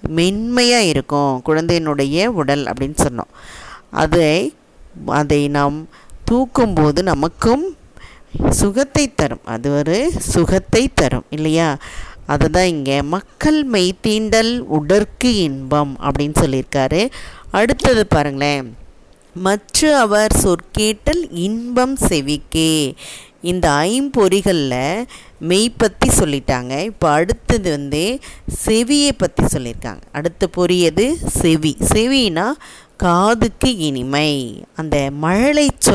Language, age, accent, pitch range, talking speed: Tamil, 20-39, native, 145-215 Hz, 85 wpm